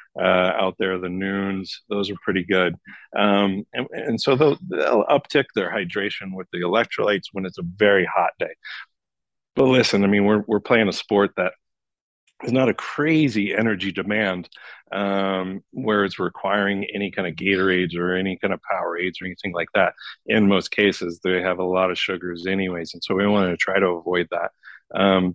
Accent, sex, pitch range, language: American, male, 90-100 Hz, English